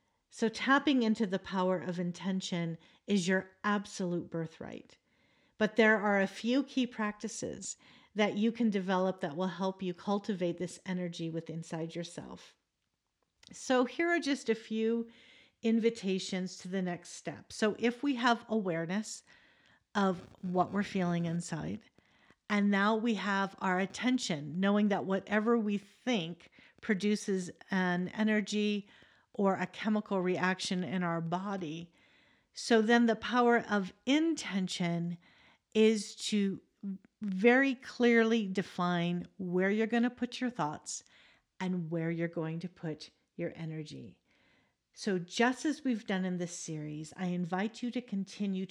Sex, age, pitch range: female, 50-69, 180-225 Hz